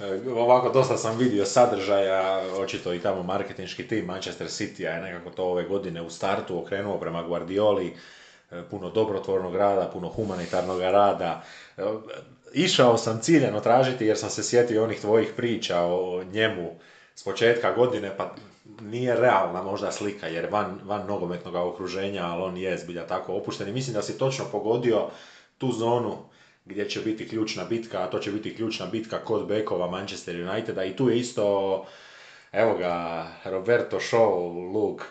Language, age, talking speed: Croatian, 30-49, 155 wpm